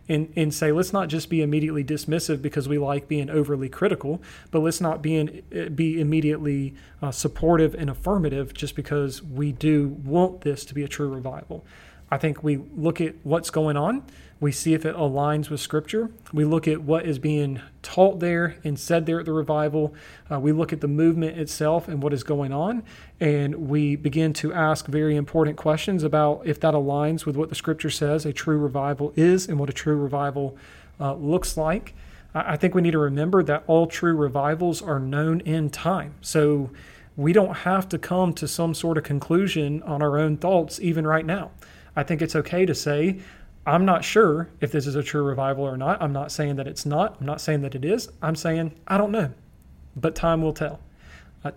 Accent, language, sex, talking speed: American, English, male, 205 wpm